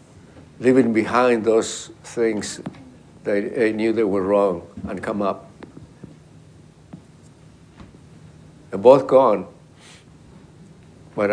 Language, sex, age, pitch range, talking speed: English, male, 60-79, 110-140 Hz, 90 wpm